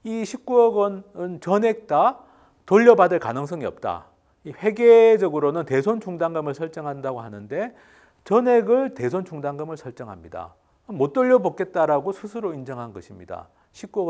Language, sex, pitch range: Korean, male, 150-225 Hz